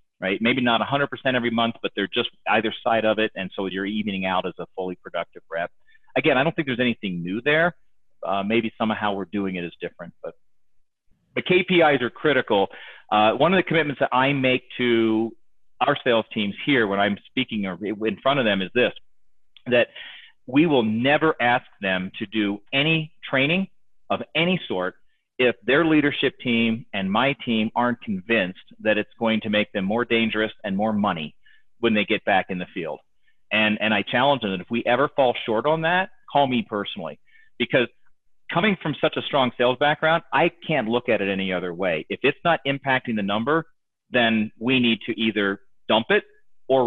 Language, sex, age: English, male, 40-59